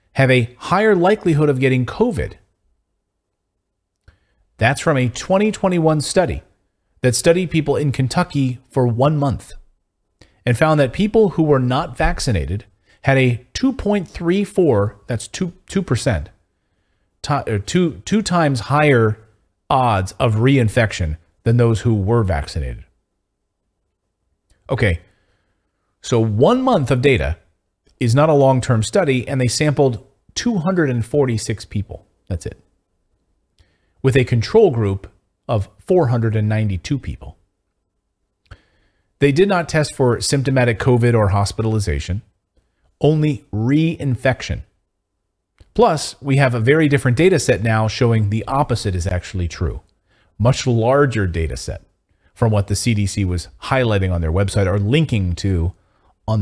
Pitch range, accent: 95-135 Hz, American